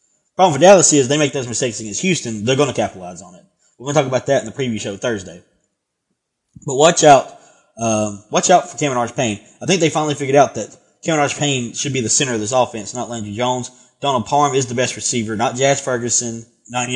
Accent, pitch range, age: American, 110-135 Hz, 20-39